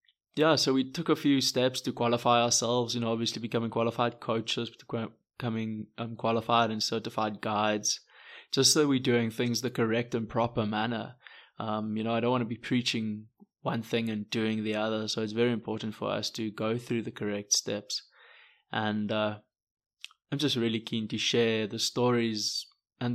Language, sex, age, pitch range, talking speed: English, male, 20-39, 110-125 Hz, 180 wpm